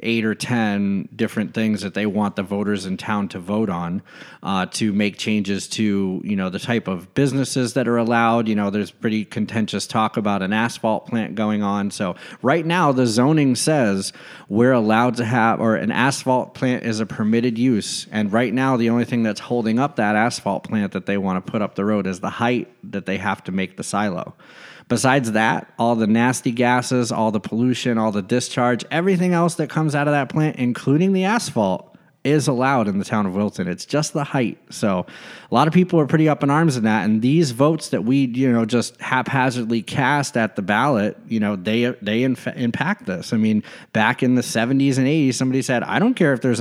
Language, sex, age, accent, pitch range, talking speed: English, male, 30-49, American, 110-135 Hz, 220 wpm